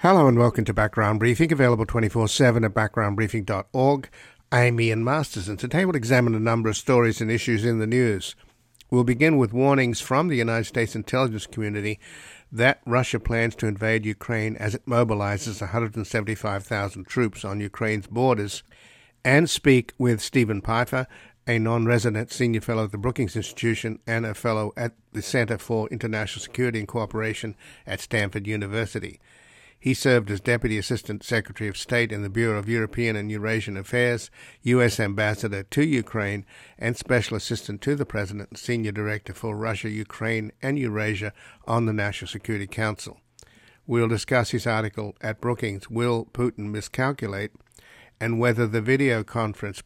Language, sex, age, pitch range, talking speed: English, male, 60-79, 105-120 Hz, 160 wpm